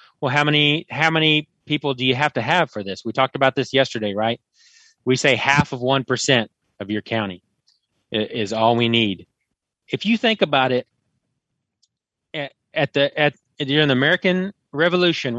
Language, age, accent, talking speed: English, 30-49, American, 170 wpm